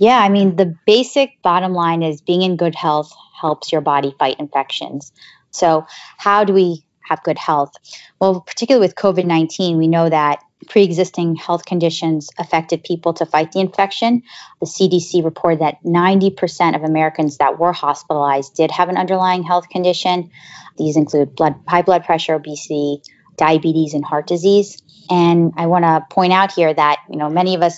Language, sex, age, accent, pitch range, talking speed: English, female, 20-39, American, 155-180 Hz, 175 wpm